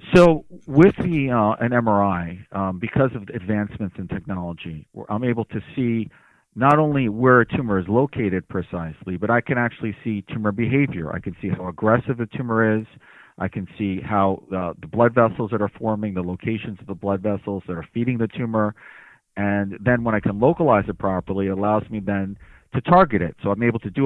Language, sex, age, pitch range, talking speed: English, male, 40-59, 100-120 Hz, 200 wpm